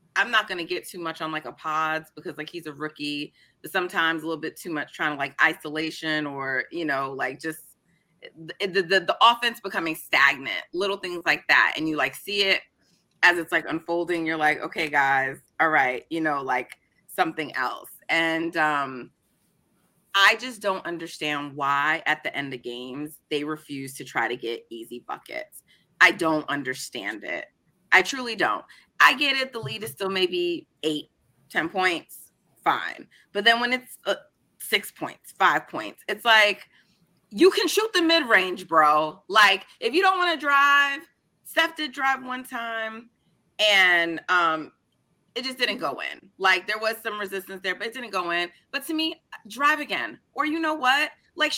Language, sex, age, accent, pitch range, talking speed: English, female, 30-49, American, 155-260 Hz, 185 wpm